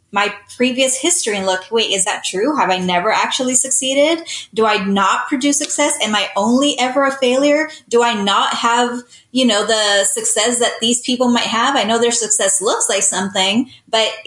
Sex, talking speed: female, 195 wpm